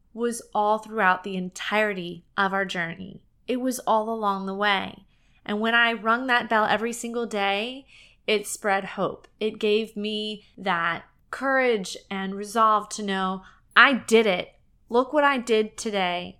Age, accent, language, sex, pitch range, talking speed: 20-39, American, English, female, 190-235 Hz, 155 wpm